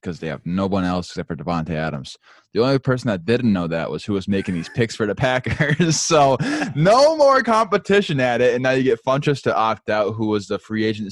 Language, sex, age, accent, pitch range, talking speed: English, male, 20-39, American, 90-120 Hz, 245 wpm